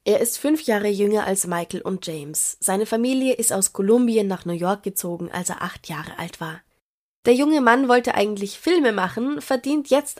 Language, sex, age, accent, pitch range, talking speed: German, female, 20-39, German, 175-220 Hz, 195 wpm